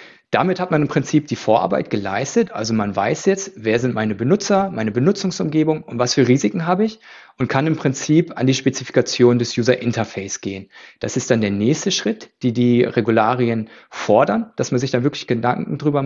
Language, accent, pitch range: German, German, 115-160 Hz